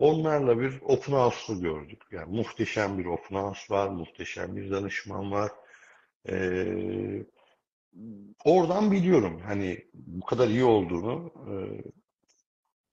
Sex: male